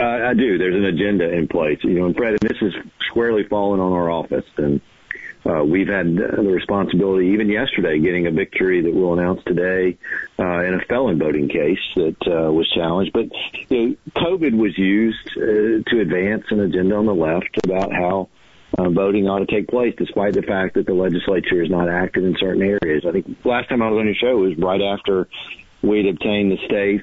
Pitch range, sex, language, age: 90-105 Hz, male, English, 50-69